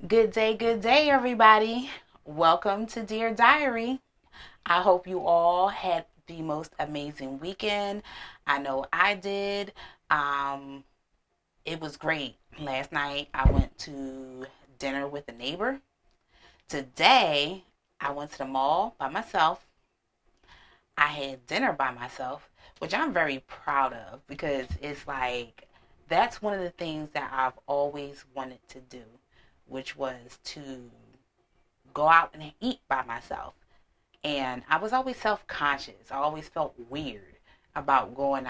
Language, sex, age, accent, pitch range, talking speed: English, female, 30-49, American, 135-175 Hz, 135 wpm